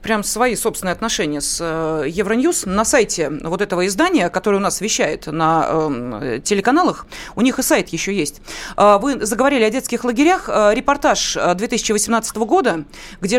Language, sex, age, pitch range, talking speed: Russian, female, 30-49, 195-285 Hz, 150 wpm